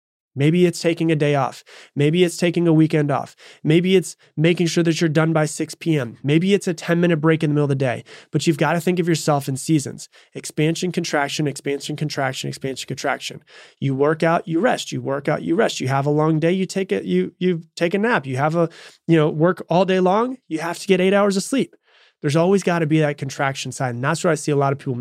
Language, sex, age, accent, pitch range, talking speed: English, male, 20-39, American, 145-175 Hz, 250 wpm